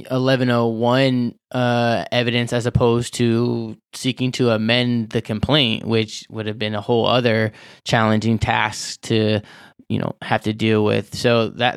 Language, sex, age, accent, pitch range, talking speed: English, male, 20-39, American, 110-125 Hz, 160 wpm